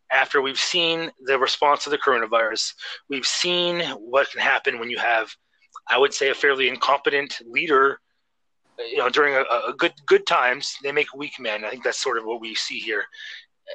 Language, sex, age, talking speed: English, male, 30-49, 190 wpm